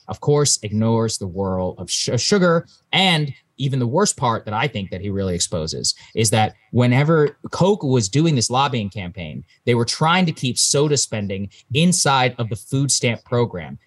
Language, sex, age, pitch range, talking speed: English, male, 20-39, 110-135 Hz, 180 wpm